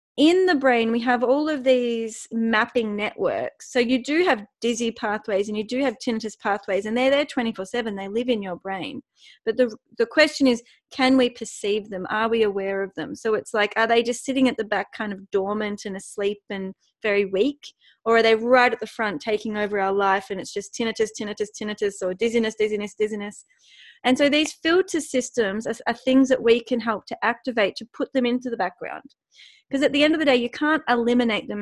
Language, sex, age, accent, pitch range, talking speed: English, female, 30-49, Australian, 210-260 Hz, 220 wpm